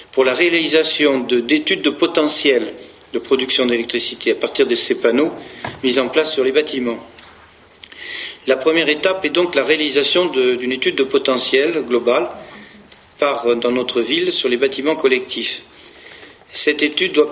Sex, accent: male, French